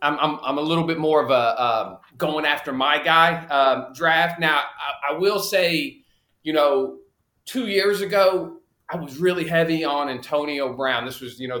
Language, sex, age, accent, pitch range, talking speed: English, male, 40-59, American, 140-175 Hz, 190 wpm